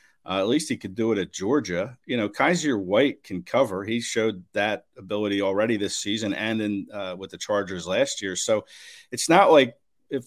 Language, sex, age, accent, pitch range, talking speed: English, male, 50-69, American, 100-115 Hz, 205 wpm